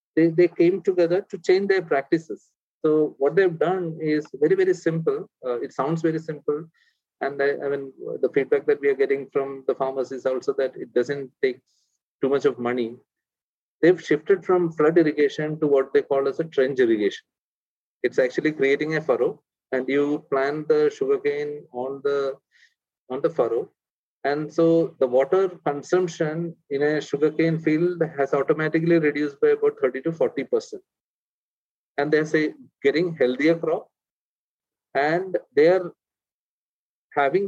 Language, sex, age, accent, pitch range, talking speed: Telugu, male, 30-49, native, 140-200 Hz, 155 wpm